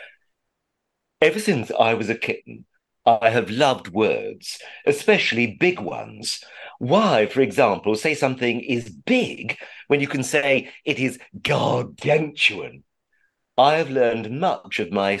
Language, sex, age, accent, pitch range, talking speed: English, male, 50-69, British, 110-185 Hz, 130 wpm